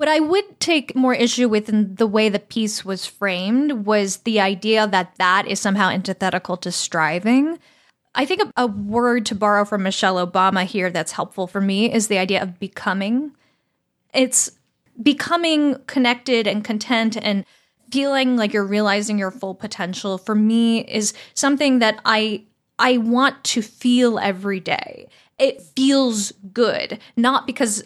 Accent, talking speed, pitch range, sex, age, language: American, 160 wpm, 200-255 Hz, female, 10-29, English